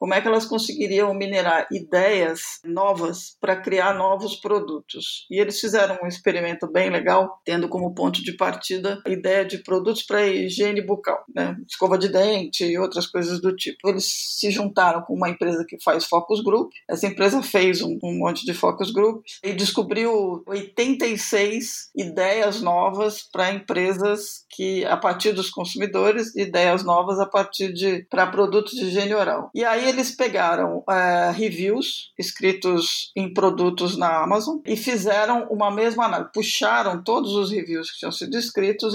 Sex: female